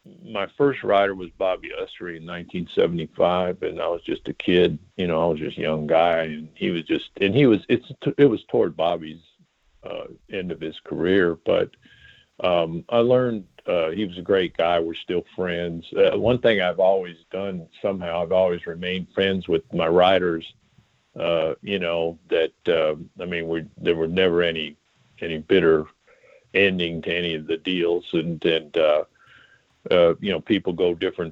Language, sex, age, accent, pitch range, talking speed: English, male, 50-69, American, 80-95 Hz, 185 wpm